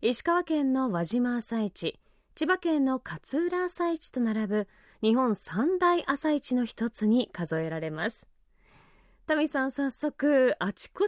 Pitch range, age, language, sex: 205-285 Hz, 20-39, Japanese, female